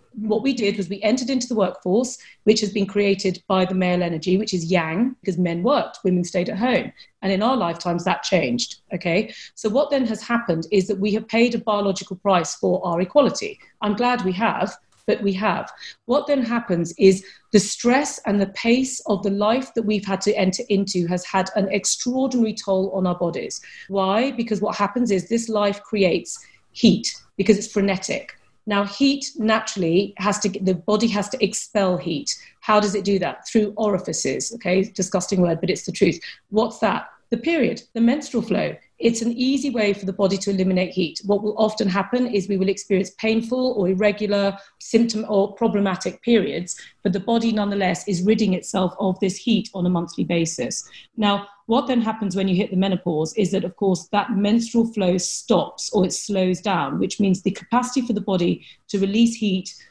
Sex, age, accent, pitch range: female, 30-49, British, 190-225 Hz